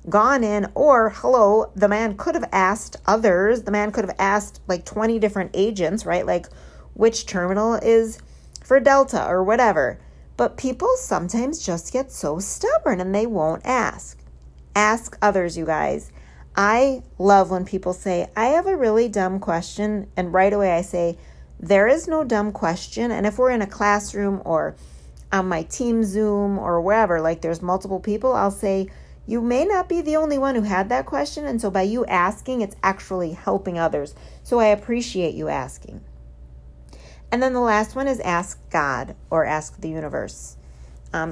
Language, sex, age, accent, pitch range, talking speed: English, female, 40-59, American, 175-225 Hz, 175 wpm